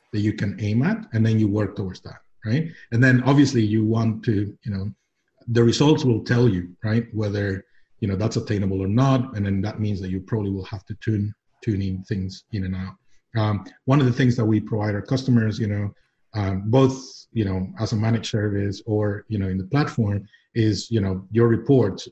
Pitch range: 105-120 Hz